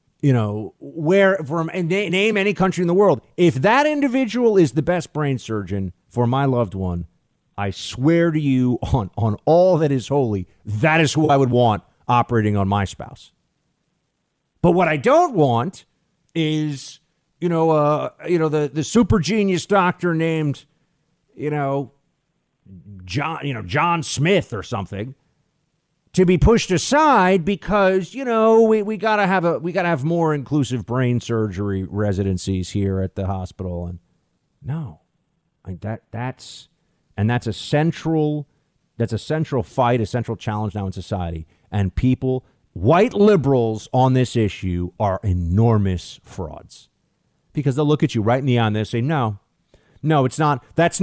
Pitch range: 110-170 Hz